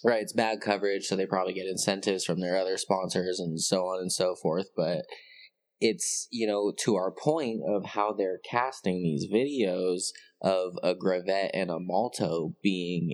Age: 20-39